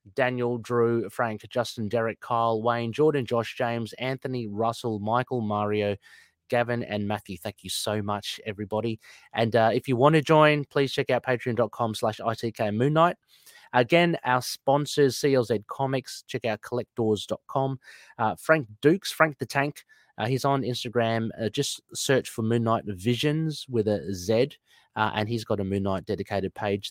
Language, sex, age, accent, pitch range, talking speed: English, male, 30-49, Australian, 110-130 Hz, 160 wpm